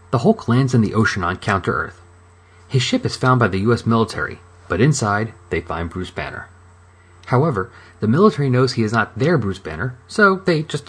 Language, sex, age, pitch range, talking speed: English, male, 30-49, 90-125 Hz, 195 wpm